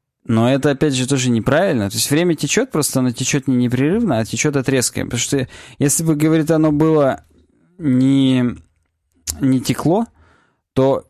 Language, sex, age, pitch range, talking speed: Russian, male, 20-39, 120-145 Hz, 155 wpm